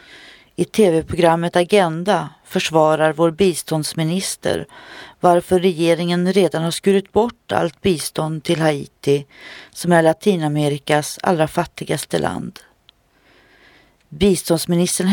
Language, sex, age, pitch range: Swedish, female, 40-59, 160-195 Hz